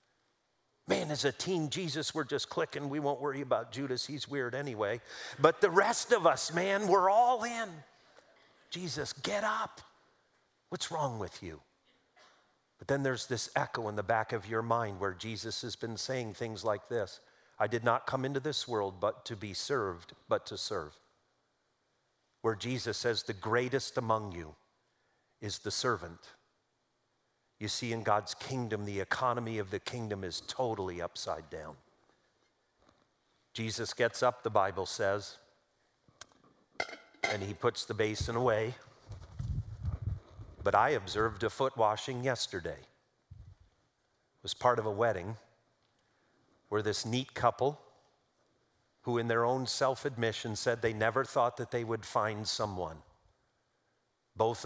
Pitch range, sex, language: 105-130 Hz, male, English